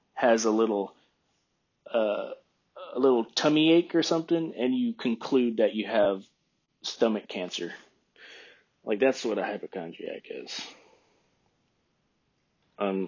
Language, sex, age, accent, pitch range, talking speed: English, male, 30-49, American, 110-145 Hz, 115 wpm